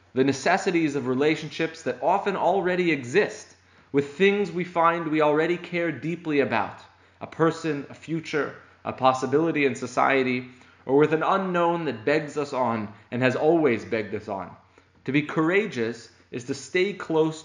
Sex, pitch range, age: male, 120-155 Hz, 20-39